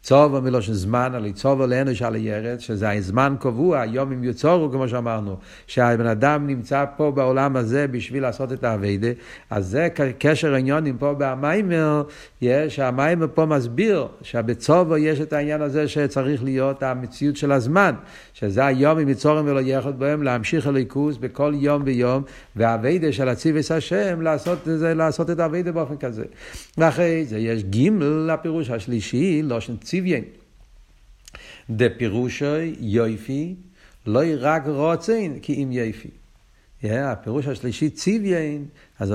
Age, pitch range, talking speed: 50-69, 120-155 Hz, 135 wpm